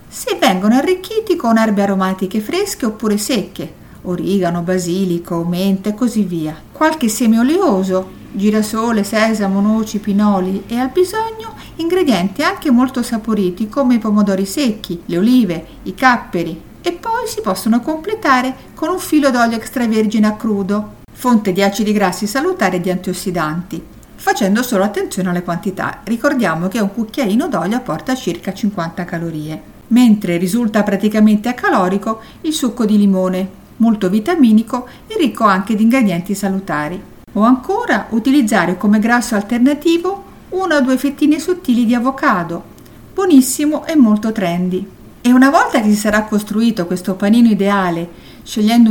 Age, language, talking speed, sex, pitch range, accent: 50-69, Italian, 140 wpm, female, 190-260 Hz, native